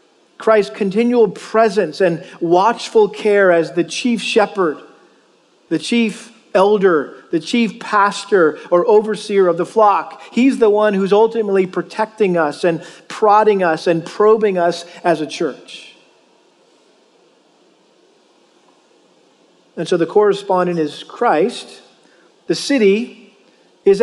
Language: English